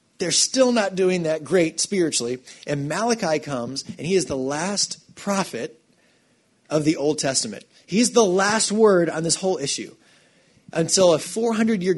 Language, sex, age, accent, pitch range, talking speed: English, male, 30-49, American, 150-195 Hz, 155 wpm